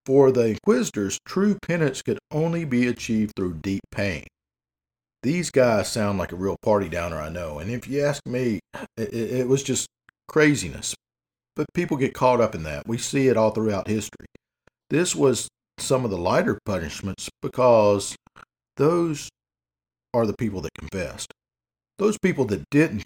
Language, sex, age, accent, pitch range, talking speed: English, male, 50-69, American, 95-125 Hz, 165 wpm